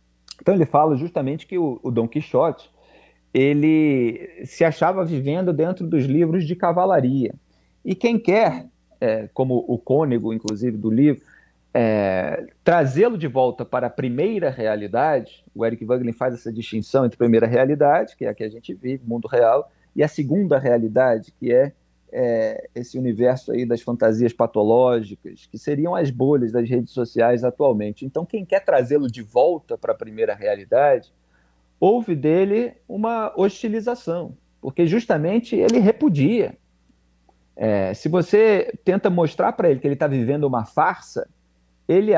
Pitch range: 115-175 Hz